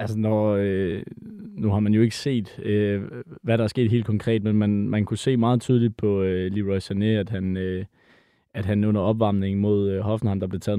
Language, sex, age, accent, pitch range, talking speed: Danish, male, 20-39, native, 100-115 Hz, 215 wpm